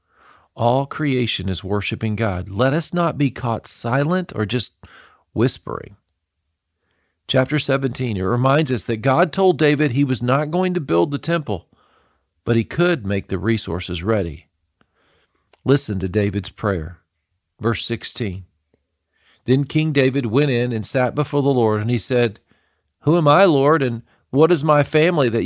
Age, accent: 40-59, American